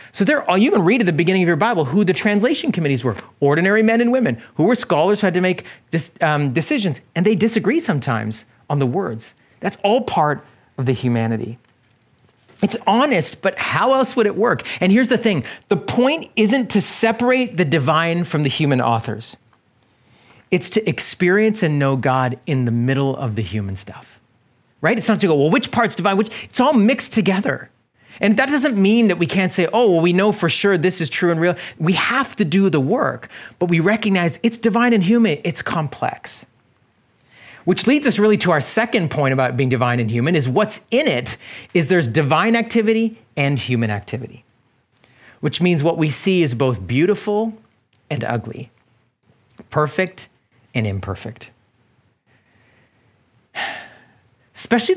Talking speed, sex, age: 180 wpm, male, 30-49